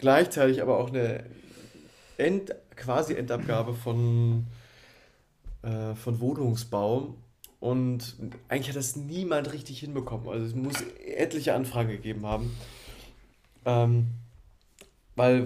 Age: 30-49